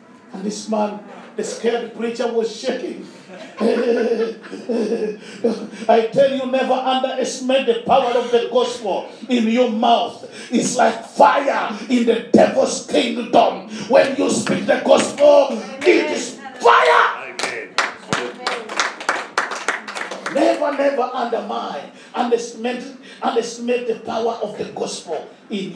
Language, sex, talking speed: English, male, 110 wpm